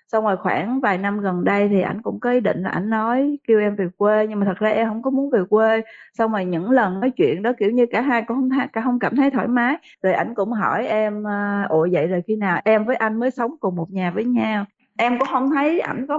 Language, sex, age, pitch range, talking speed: Vietnamese, female, 20-39, 200-250 Hz, 280 wpm